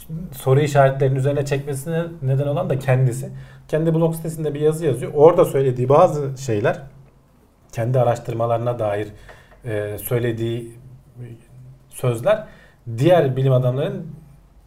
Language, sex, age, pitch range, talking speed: Turkish, male, 40-59, 120-145 Hz, 105 wpm